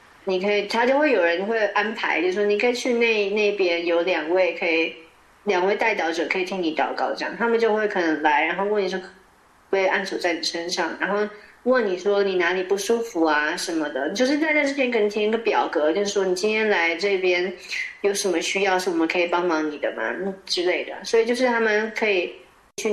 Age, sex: 30-49, female